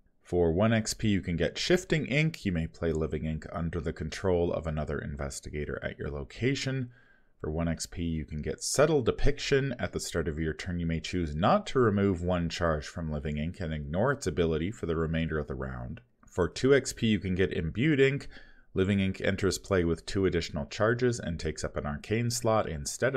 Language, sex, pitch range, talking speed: English, male, 80-105 Hz, 205 wpm